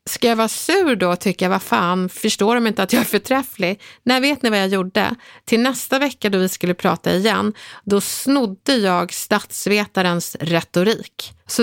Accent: native